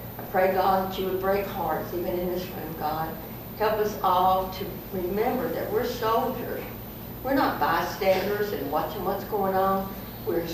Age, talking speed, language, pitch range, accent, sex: 60-79, 170 wpm, English, 180-210 Hz, American, female